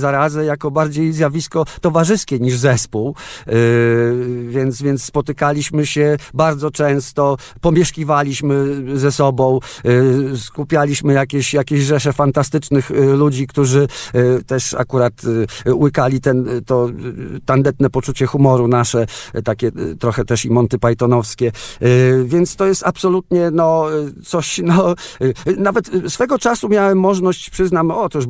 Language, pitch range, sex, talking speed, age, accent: Polish, 120-150 Hz, male, 135 wpm, 50-69, native